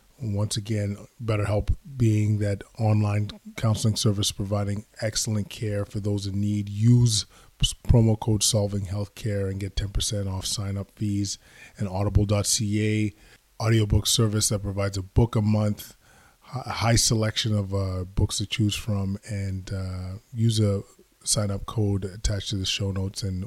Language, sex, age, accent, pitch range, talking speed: English, male, 20-39, American, 95-110 Hz, 150 wpm